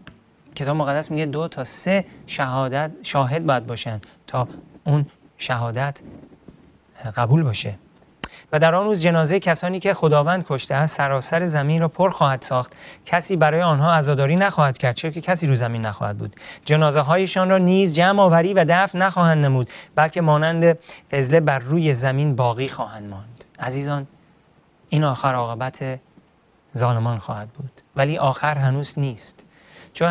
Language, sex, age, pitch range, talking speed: Persian, male, 30-49, 125-160 Hz, 150 wpm